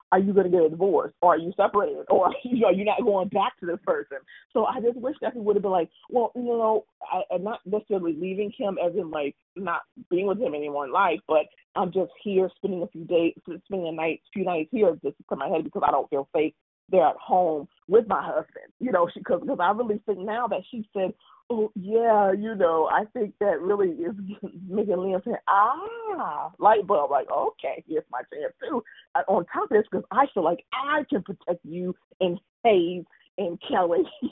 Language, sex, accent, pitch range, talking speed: English, female, American, 180-240 Hz, 225 wpm